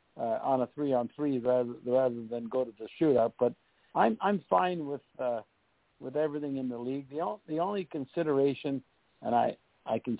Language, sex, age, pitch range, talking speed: English, male, 60-79, 120-155 Hz, 180 wpm